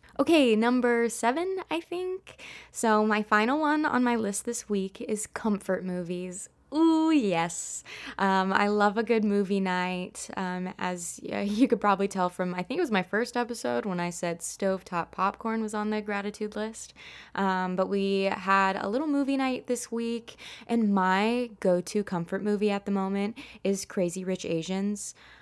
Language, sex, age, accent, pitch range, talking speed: English, female, 20-39, American, 185-235 Hz, 170 wpm